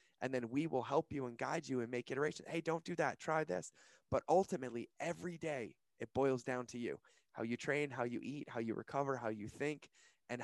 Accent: American